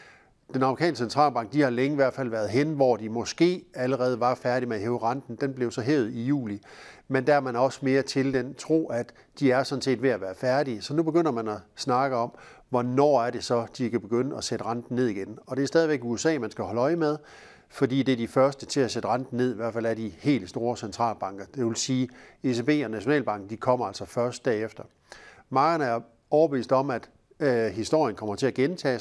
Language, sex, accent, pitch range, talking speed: Danish, male, native, 120-140 Hz, 235 wpm